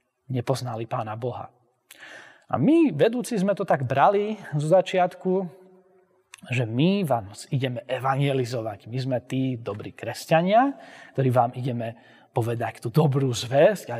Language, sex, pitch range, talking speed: Slovak, male, 115-155 Hz, 130 wpm